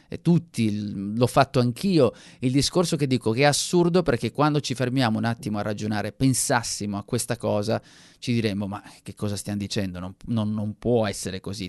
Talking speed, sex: 185 wpm, male